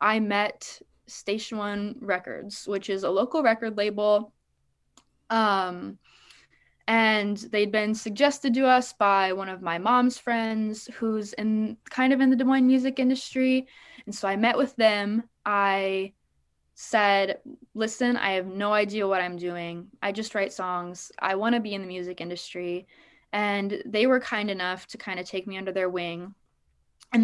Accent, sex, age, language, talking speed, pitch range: American, female, 20-39, English, 165 wpm, 185-235 Hz